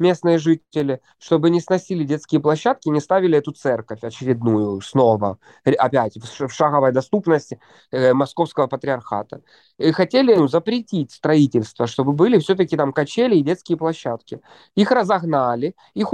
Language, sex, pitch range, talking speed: Russian, male, 130-180 Hz, 130 wpm